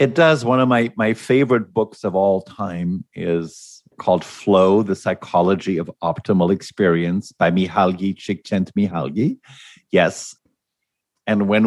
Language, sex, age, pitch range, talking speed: English, male, 50-69, 95-115 Hz, 130 wpm